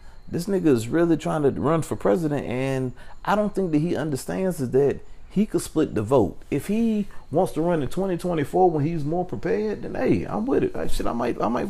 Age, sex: 40-59, male